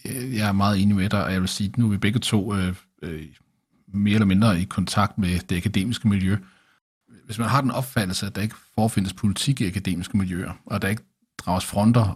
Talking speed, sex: 220 wpm, male